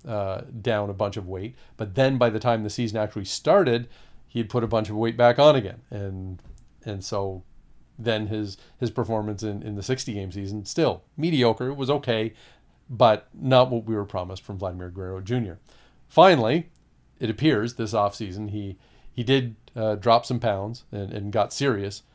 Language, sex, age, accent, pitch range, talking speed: English, male, 40-59, American, 100-125 Hz, 180 wpm